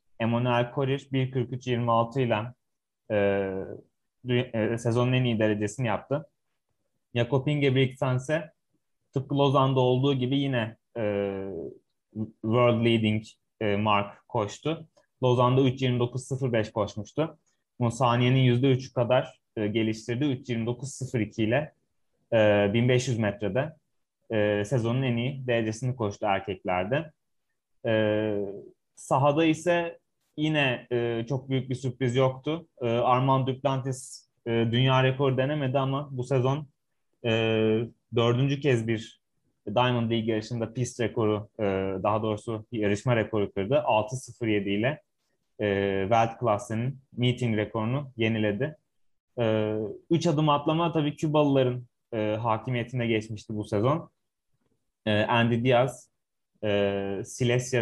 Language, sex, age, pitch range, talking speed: Turkish, male, 30-49, 110-135 Hz, 110 wpm